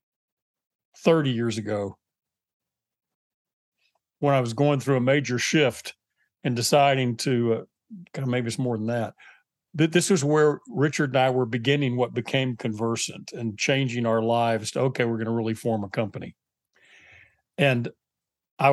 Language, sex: English, male